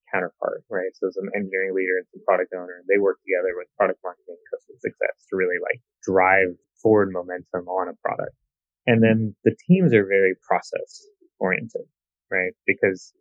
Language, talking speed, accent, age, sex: English, 155 wpm, American, 20-39, male